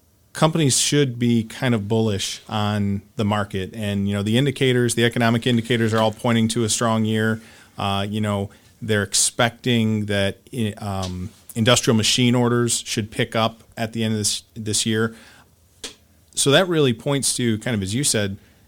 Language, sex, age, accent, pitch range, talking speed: English, male, 40-59, American, 105-115 Hz, 175 wpm